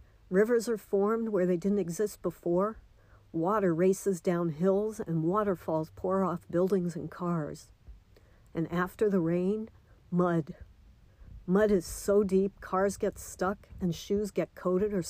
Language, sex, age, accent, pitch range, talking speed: English, female, 60-79, American, 165-200 Hz, 145 wpm